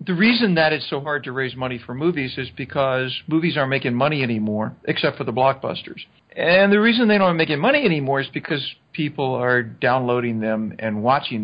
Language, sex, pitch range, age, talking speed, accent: English, male, 130-180 Hz, 50-69, 200 wpm, American